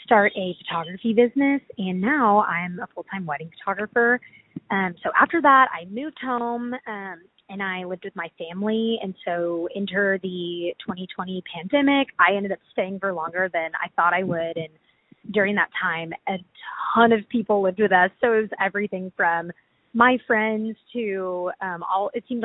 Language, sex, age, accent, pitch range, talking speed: English, female, 20-39, American, 180-220 Hz, 175 wpm